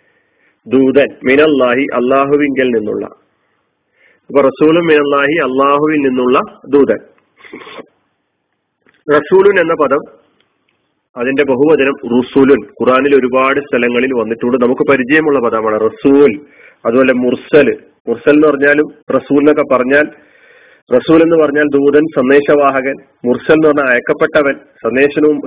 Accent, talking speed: native, 85 wpm